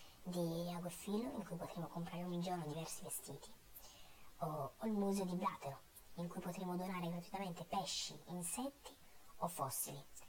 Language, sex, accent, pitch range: Italian, male, native, 160-205 Hz